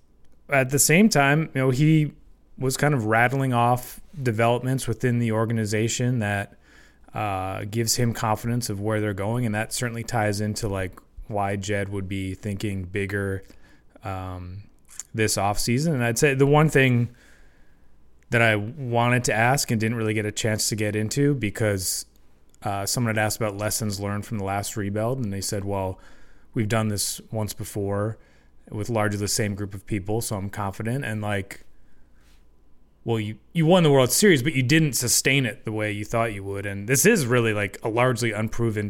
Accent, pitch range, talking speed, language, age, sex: American, 100-120 Hz, 185 wpm, English, 20-39, male